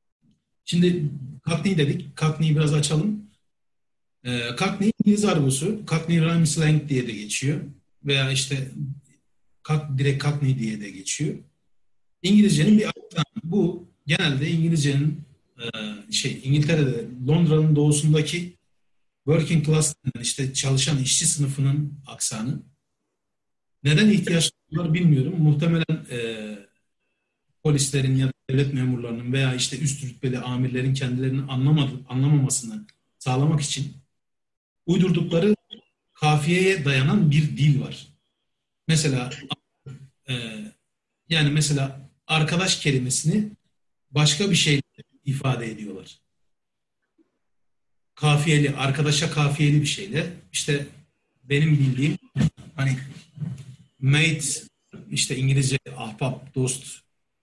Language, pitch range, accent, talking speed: Turkish, 135-160 Hz, native, 95 wpm